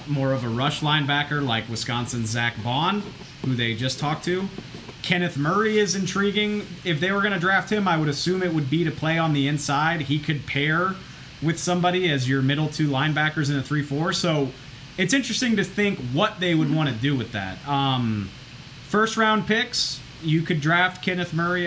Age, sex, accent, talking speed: 30-49, male, American, 195 wpm